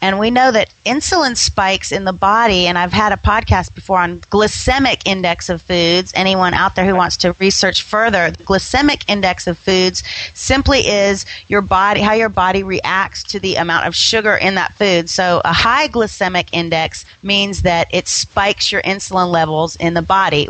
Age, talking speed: 30-49, 185 wpm